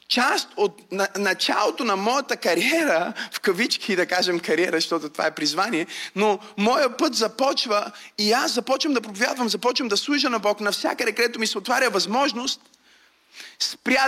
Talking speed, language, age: 155 wpm, Bulgarian, 30-49